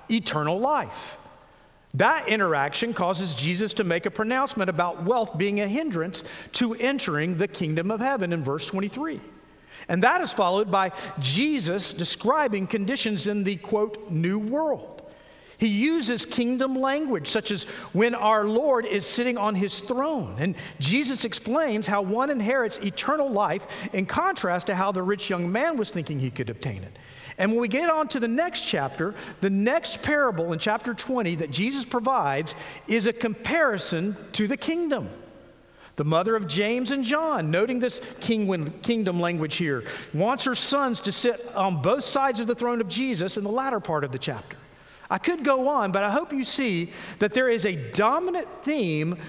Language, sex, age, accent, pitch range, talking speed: English, male, 50-69, American, 185-260 Hz, 175 wpm